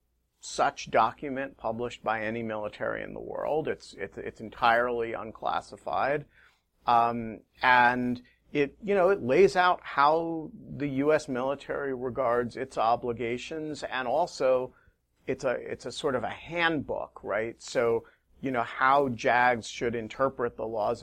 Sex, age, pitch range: male, 40-59, 110-130 Hz